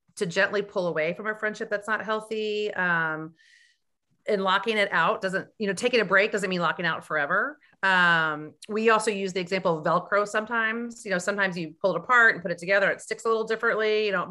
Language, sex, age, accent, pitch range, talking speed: English, female, 30-49, American, 175-215 Hz, 225 wpm